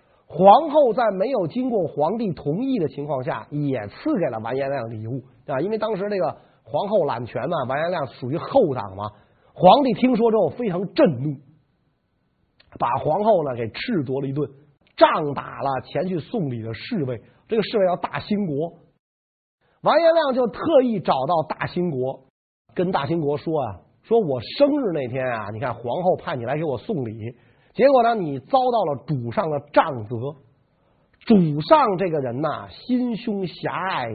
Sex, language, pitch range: male, Chinese, 135-225 Hz